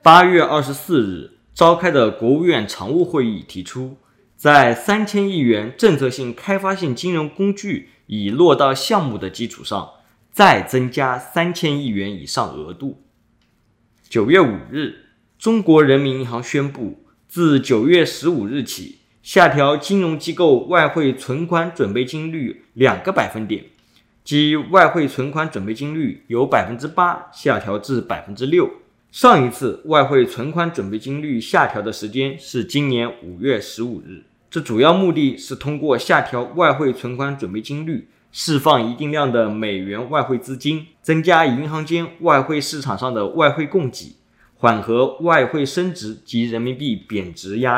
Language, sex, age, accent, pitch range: Chinese, male, 20-39, native, 115-160 Hz